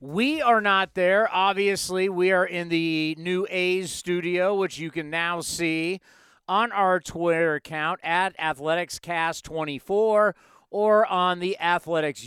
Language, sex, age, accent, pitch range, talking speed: English, male, 40-59, American, 155-185 Hz, 130 wpm